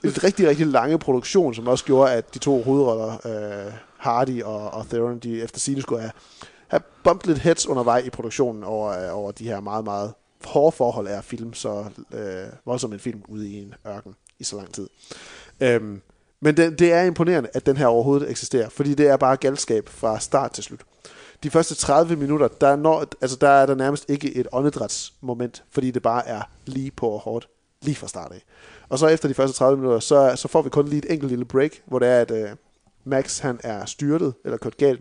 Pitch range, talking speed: 115-145 Hz, 220 wpm